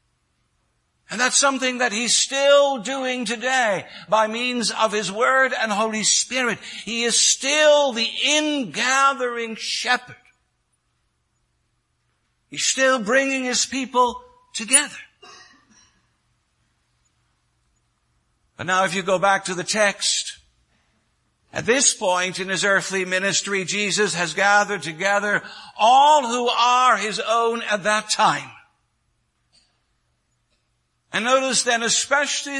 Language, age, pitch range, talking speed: English, 60-79, 205-265 Hz, 110 wpm